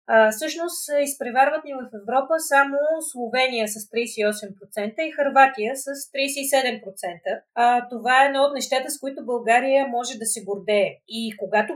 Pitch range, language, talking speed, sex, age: 215-275 Hz, Bulgarian, 145 wpm, female, 30-49